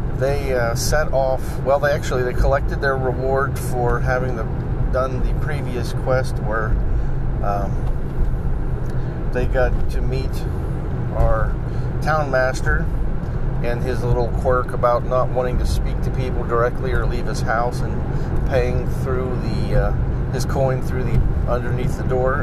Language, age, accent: English, 40-59, American